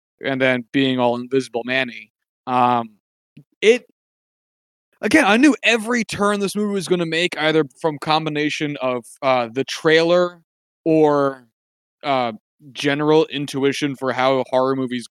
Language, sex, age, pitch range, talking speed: English, male, 20-39, 130-175 Hz, 135 wpm